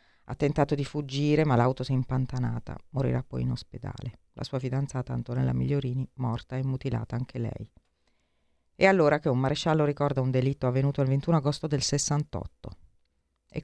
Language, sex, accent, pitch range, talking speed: Italian, female, native, 115-145 Hz, 165 wpm